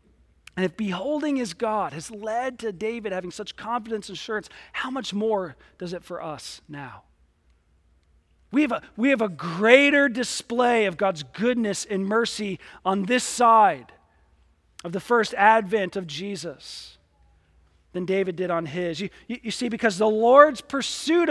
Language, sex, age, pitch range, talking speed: English, male, 40-59, 190-280 Hz, 155 wpm